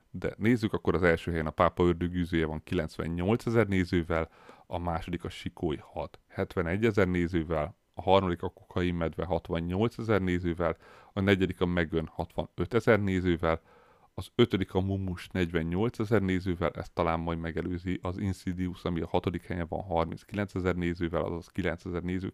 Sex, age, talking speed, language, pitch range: male, 30-49, 160 wpm, Hungarian, 85-95 Hz